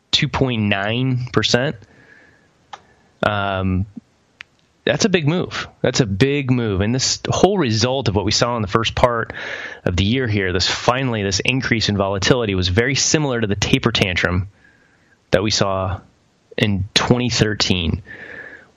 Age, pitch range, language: 30-49, 100-130 Hz, English